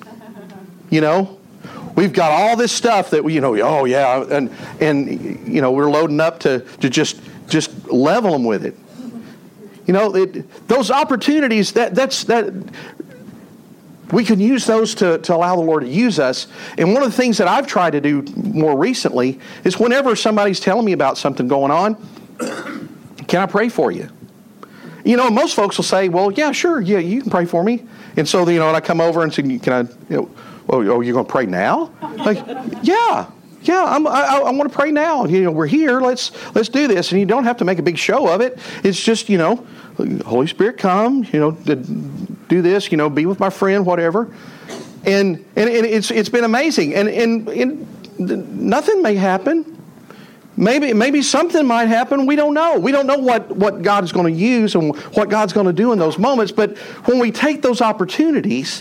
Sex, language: male, English